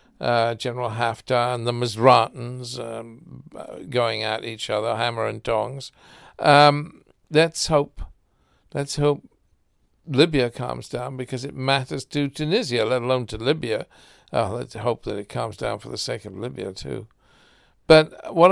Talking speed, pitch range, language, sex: 145 wpm, 115-140 Hz, English, male